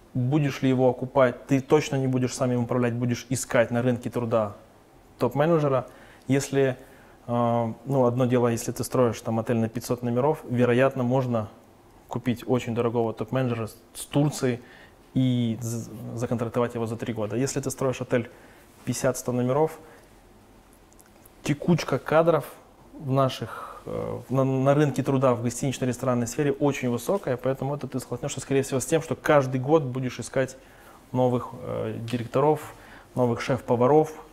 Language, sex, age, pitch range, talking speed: Russian, male, 20-39, 120-135 Hz, 140 wpm